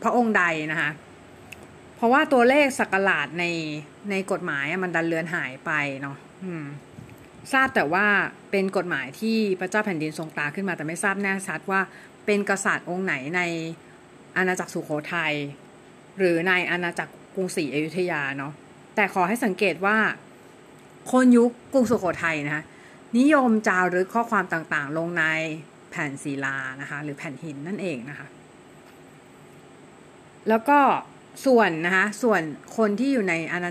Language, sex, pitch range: Thai, female, 160-215 Hz